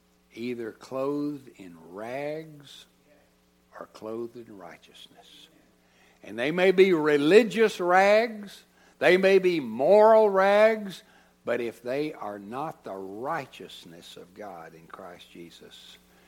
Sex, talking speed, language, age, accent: male, 115 wpm, English, 60-79, American